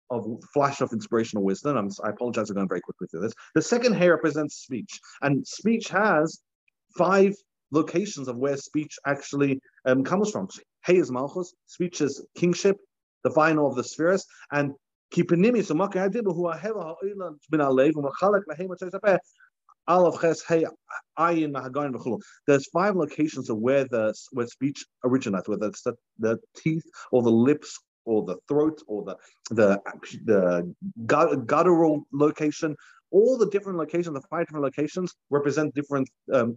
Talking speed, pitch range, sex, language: 135 wpm, 130-175 Hz, male, English